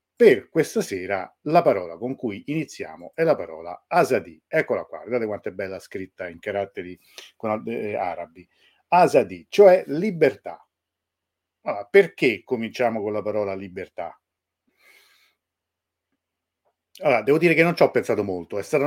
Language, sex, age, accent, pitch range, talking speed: Italian, male, 50-69, native, 105-140 Hz, 145 wpm